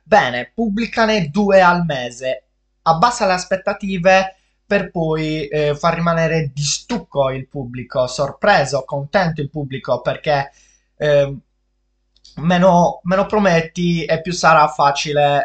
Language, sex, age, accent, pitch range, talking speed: Italian, male, 20-39, native, 135-165 Hz, 115 wpm